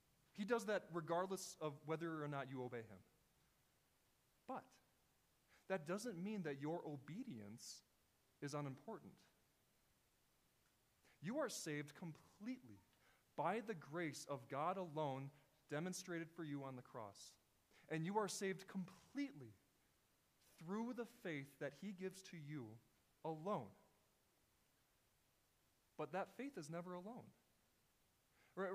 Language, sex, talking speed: English, male, 120 wpm